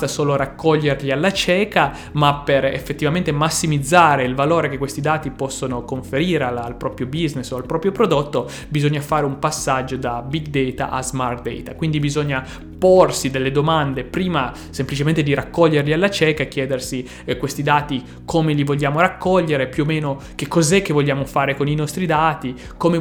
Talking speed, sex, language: 170 wpm, male, Italian